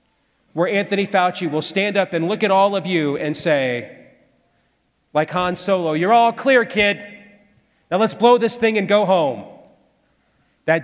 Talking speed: 165 wpm